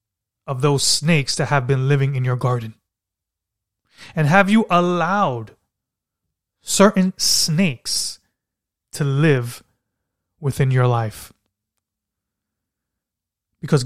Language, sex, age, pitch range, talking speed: English, male, 20-39, 115-165 Hz, 95 wpm